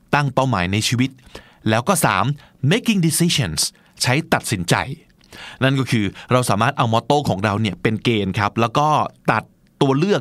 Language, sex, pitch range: Thai, male, 110-150 Hz